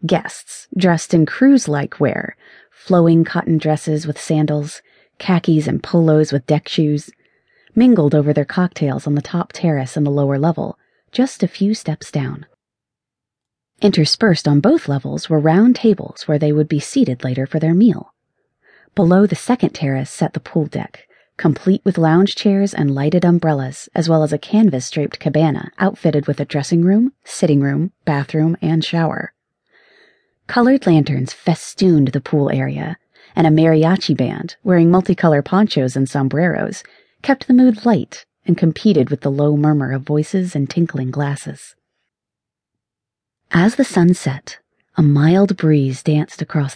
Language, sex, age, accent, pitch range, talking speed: English, female, 30-49, American, 145-190 Hz, 155 wpm